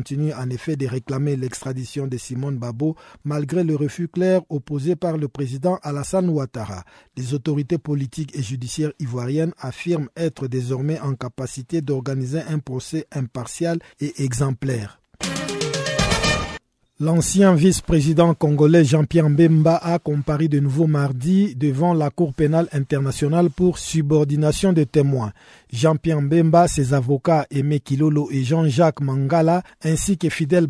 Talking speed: 130 wpm